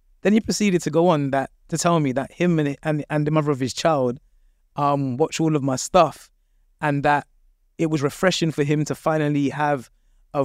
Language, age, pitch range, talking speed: English, 20-39, 135-160 Hz, 220 wpm